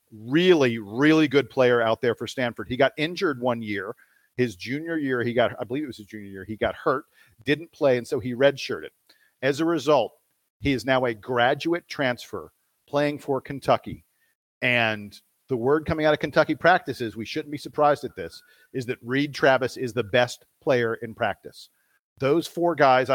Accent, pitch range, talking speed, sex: American, 110-135 Hz, 190 wpm, male